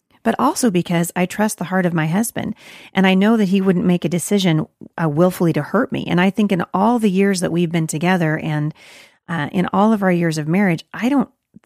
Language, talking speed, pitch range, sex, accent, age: English, 235 wpm, 165-210 Hz, female, American, 30-49